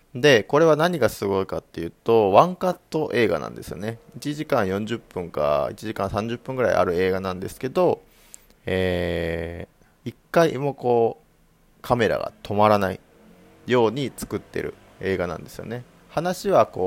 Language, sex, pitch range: Japanese, male, 90-135 Hz